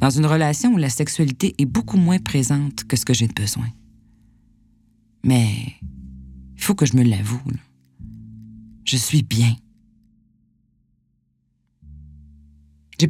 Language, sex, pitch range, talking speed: French, female, 105-140 Hz, 130 wpm